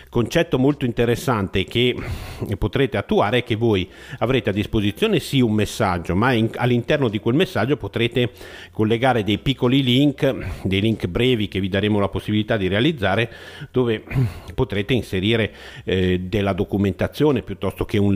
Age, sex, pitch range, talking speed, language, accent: 50-69, male, 100-120 Hz, 145 wpm, Italian, native